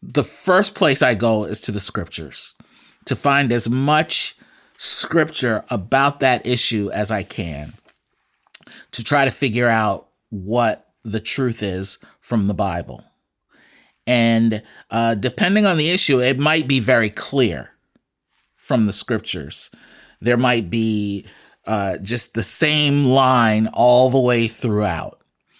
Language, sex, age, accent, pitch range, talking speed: English, male, 30-49, American, 100-125 Hz, 135 wpm